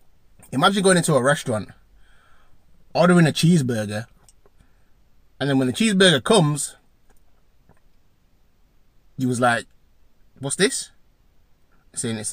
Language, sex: English, male